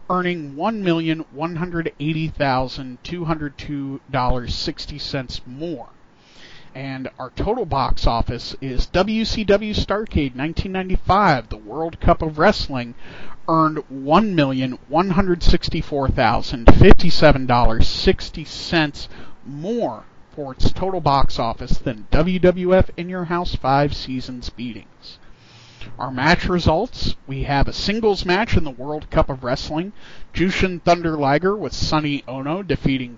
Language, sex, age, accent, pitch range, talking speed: English, male, 40-59, American, 130-175 Hz, 100 wpm